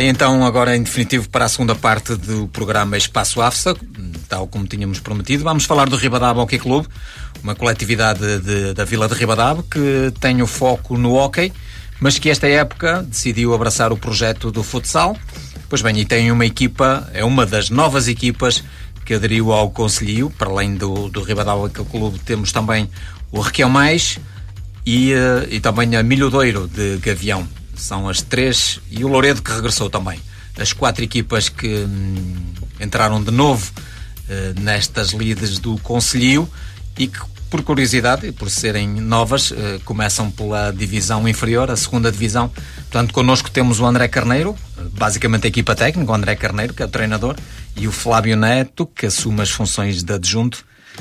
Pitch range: 105-125 Hz